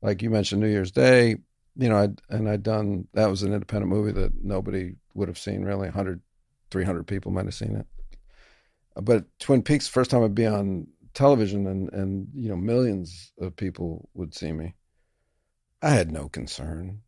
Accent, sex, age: American, male, 50-69